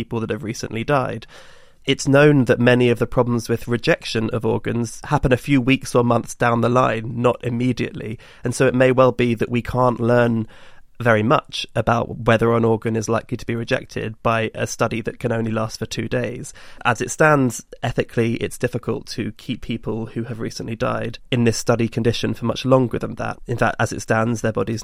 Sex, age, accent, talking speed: male, 20-39, British, 210 wpm